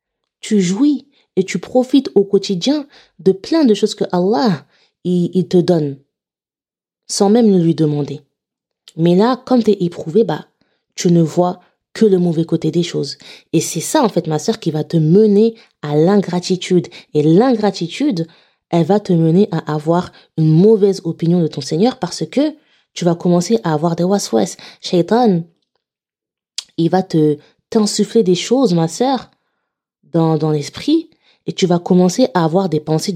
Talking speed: 165 wpm